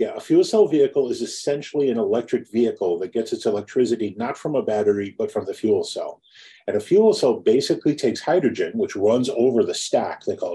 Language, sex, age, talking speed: English, male, 40-59, 210 wpm